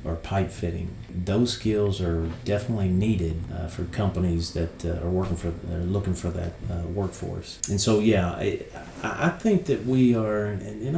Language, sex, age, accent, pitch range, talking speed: English, male, 40-59, American, 85-105 Hz, 180 wpm